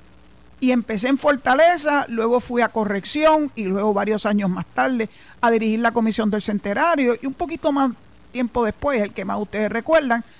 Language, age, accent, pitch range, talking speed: Spanish, 50-69, American, 205-270 Hz, 180 wpm